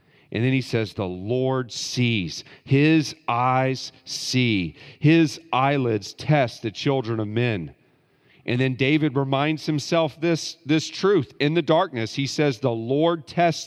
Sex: male